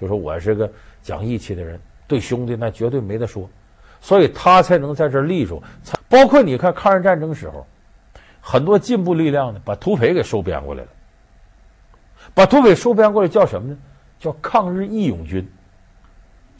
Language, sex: Chinese, male